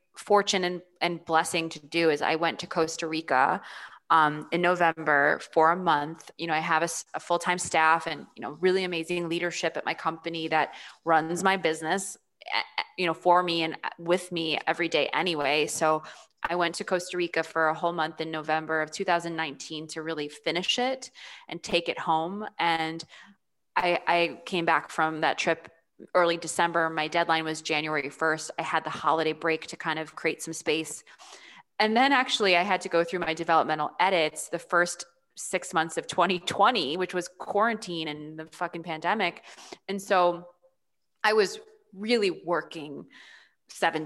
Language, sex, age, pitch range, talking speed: English, female, 20-39, 160-180 Hz, 175 wpm